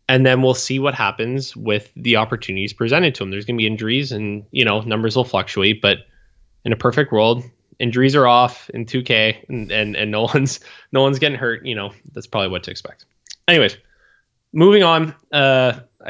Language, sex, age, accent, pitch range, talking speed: English, male, 10-29, American, 105-135 Hz, 200 wpm